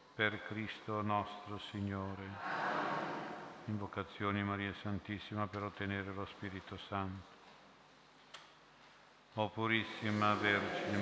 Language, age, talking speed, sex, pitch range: Italian, 50-69, 80 wpm, male, 100-110 Hz